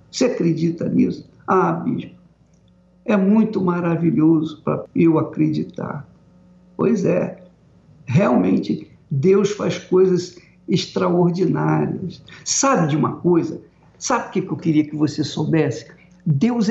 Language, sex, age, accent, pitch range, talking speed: Portuguese, male, 60-79, Brazilian, 170-250 Hz, 110 wpm